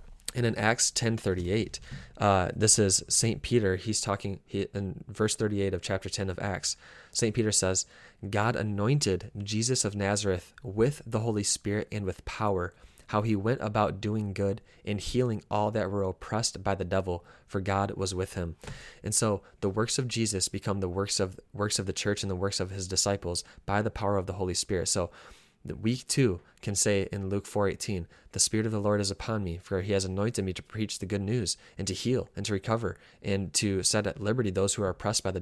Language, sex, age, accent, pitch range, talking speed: English, male, 20-39, American, 95-110 Hz, 215 wpm